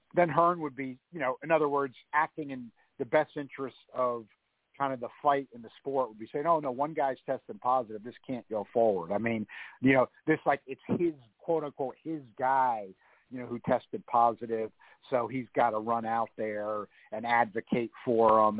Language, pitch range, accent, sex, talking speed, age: English, 110-150 Hz, American, male, 205 wpm, 50-69